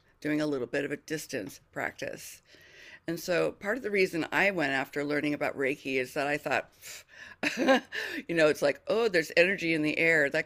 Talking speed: 200 wpm